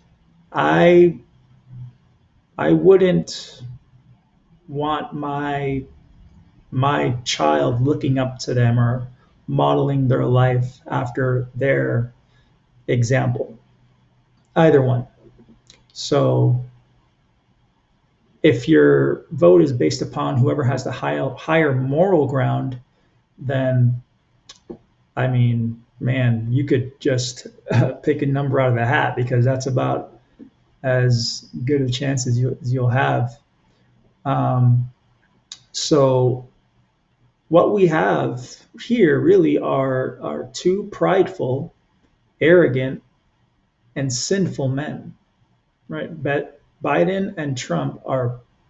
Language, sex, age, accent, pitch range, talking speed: English, male, 40-59, American, 125-145 Hz, 100 wpm